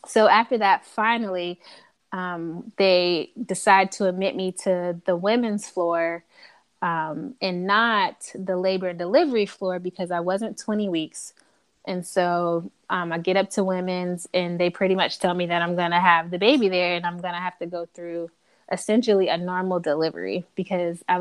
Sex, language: female, English